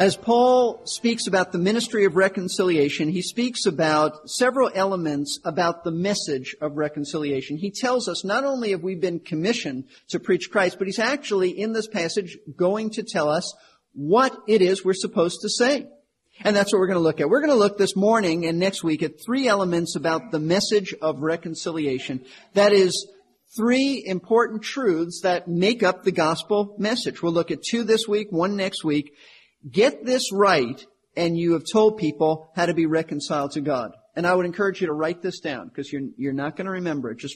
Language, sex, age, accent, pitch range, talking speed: English, male, 50-69, American, 160-220 Hz, 200 wpm